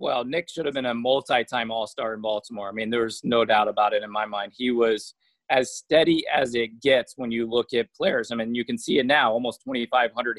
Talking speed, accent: 255 wpm, American